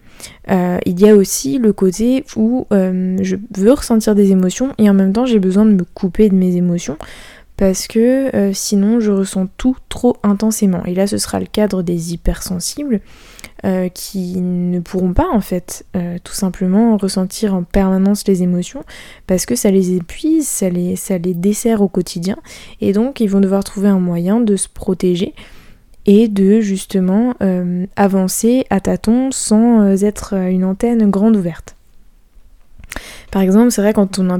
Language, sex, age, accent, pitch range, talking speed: French, female, 20-39, French, 185-215 Hz, 175 wpm